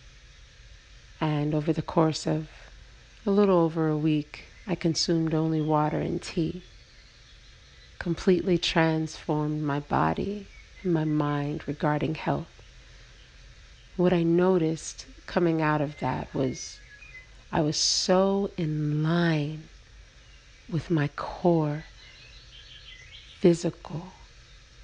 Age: 50-69